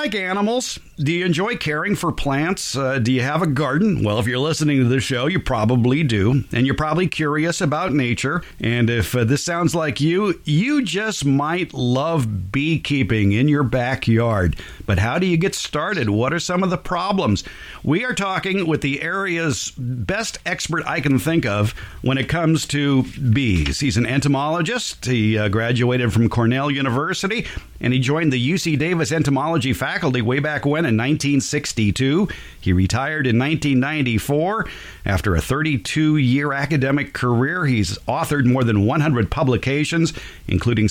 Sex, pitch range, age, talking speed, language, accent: male, 120-165 Hz, 50-69, 165 wpm, English, American